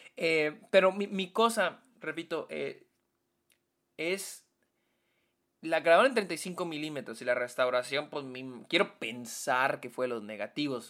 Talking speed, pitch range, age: 115 wpm, 135-180 Hz, 20-39